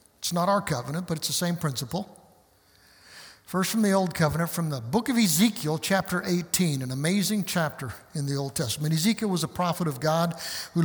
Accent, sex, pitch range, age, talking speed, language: American, male, 155-190 Hz, 60-79, 195 wpm, English